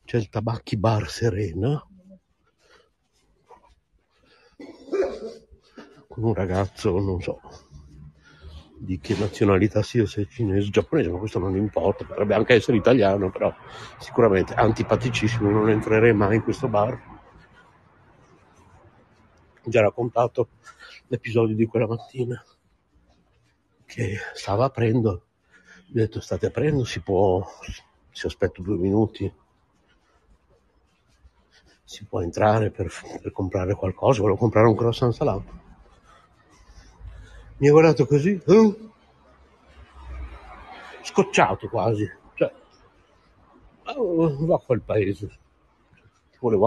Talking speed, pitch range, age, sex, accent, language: 105 wpm, 95-120 Hz, 60-79, male, native, Italian